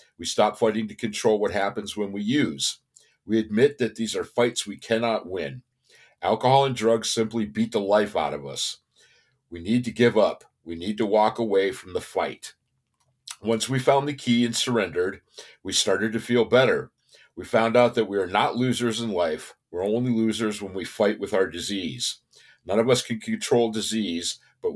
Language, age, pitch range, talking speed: English, 50-69, 105-120 Hz, 195 wpm